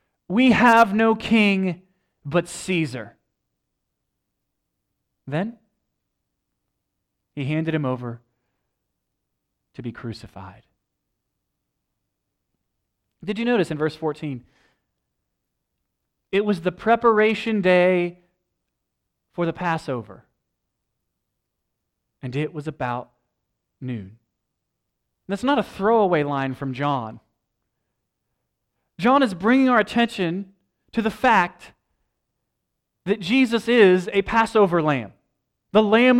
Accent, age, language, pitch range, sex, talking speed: American, 30-49, English, 155-225 Hz, male, 95 wpm